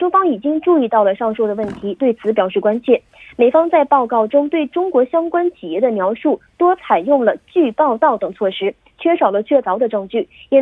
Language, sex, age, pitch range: Korean, female, 20-39, 230-325 Hz